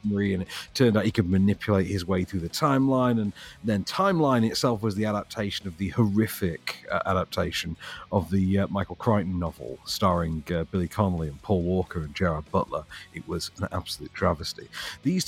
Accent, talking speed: British, 180 wpm